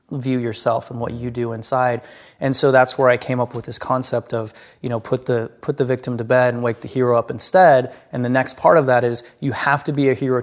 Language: English